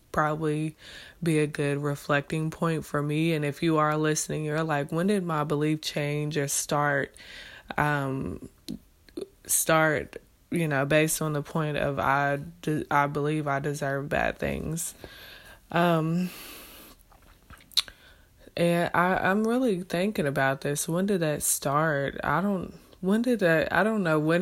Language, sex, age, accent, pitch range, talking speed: English, female, 20-39, American, 145-160 Hz, 135 wpm